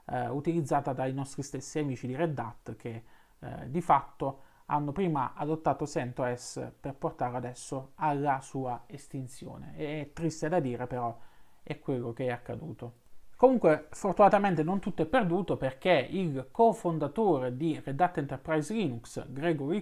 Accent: native